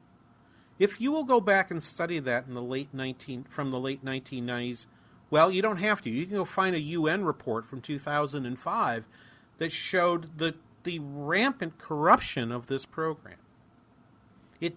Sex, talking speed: male, 160 wpm